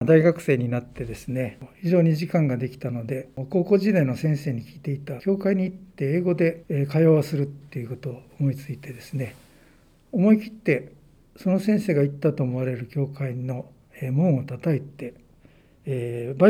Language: Japanese